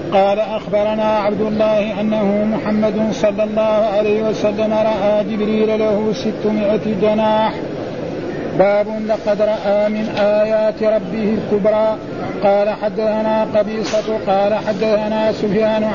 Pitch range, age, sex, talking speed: 210-220 Hz, 50-69, male, 105 wpm